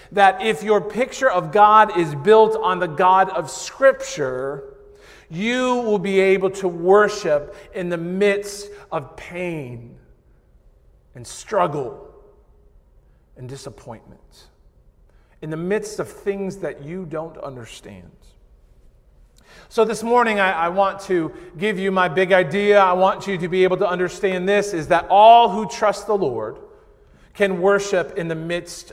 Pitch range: 160-205 Hz